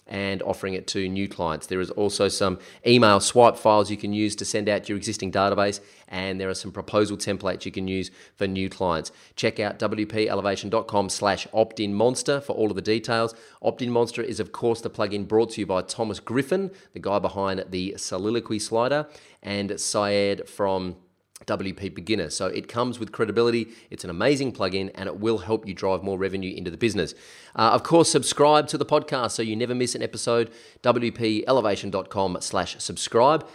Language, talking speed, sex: English, 185 wpm, male